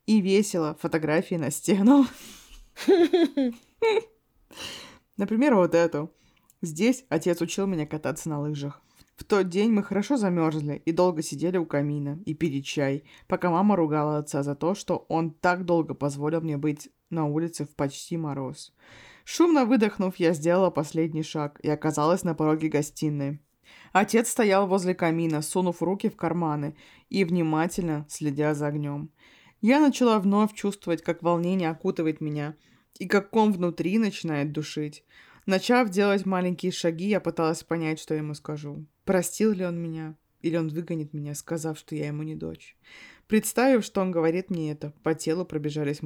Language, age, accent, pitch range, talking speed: Russian, 20-39, native, 150-190 Hz, 155 wpm